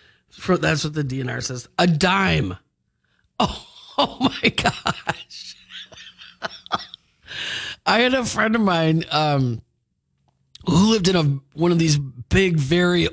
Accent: American